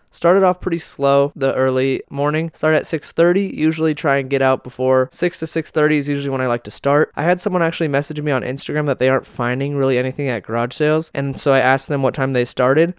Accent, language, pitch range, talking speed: American, English, 125-150 Hz, 235 wpm